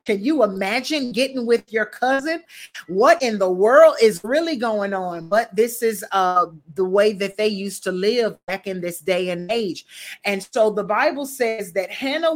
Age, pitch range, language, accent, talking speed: 40-59, 215-275 Hz, English, American, 190 wpm